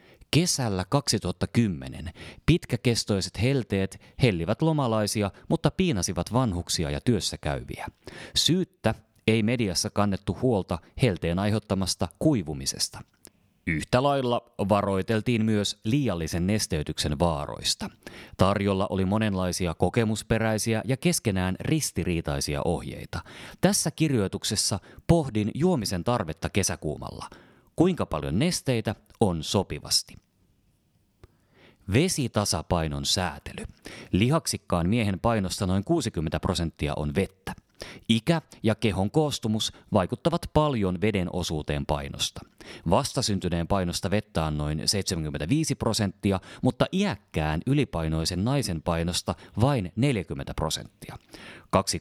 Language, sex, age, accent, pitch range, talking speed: Finnish, male, 30-49, native, 90-120 Hz, 95 wpm